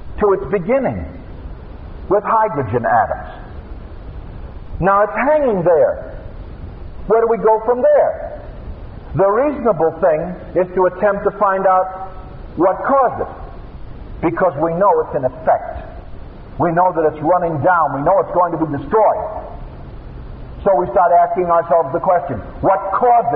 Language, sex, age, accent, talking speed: English, male, 50-69, American, 145 wpm